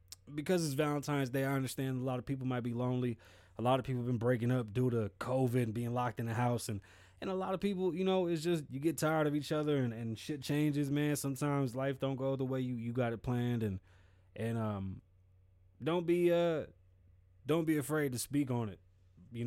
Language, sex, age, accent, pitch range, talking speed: English, male, 20-39, American, 100-145 Hz, 235 wpm